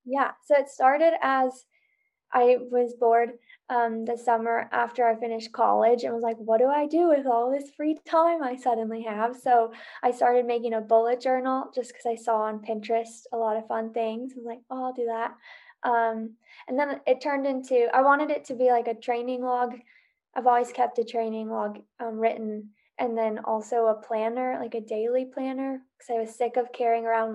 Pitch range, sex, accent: 225-255 Hz, female, American